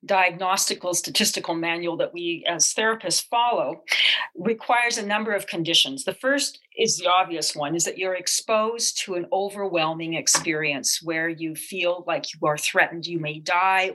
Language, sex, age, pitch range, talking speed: English, female, 40-59, 165-205 Hz, 160 wpm